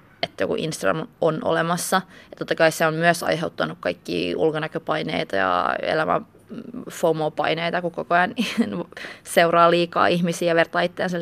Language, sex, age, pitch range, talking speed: Finnish, female, 20-39, 160-180 Hz, 130 wpm